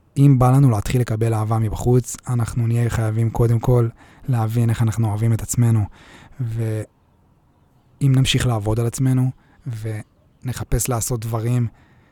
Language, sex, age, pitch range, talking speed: Hebrew, male, 20-39, 110-125 Hz, 130 wpm